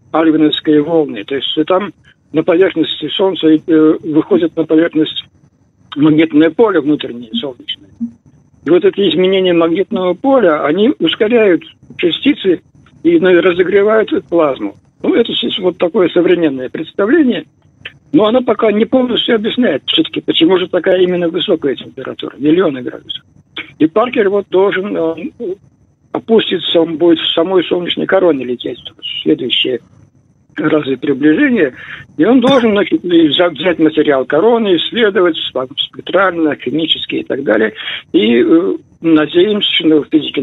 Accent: native